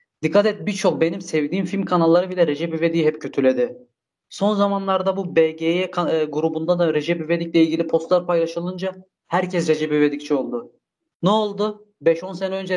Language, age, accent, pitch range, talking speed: Turkish, 30-49, native, 145-180 Hz, 160 wpm